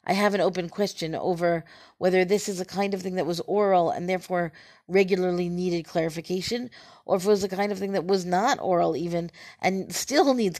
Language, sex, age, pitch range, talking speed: English, female, 40-59, 170-200 Hz, 210 wpm